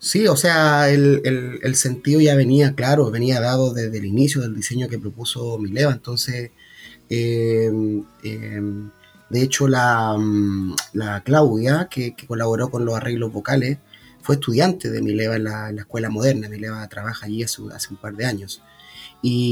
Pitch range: 115-145 Hz